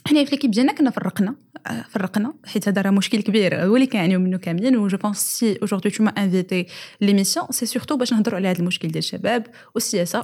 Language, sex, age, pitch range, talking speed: Arabic, female, 20-39, 180-245 Hz, 205 wpm